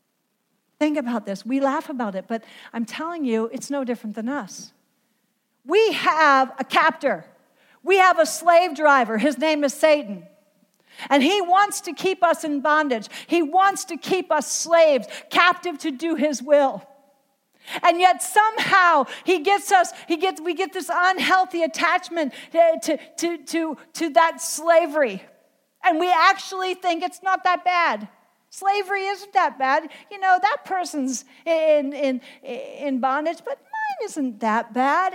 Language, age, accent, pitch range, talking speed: English, 50-69, American, 265-360 Hz, 155 wpm